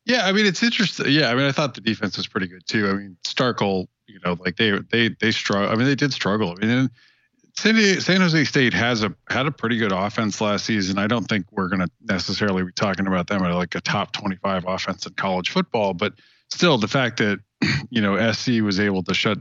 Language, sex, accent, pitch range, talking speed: English, male, American, 95-135 Hz, 240 wpm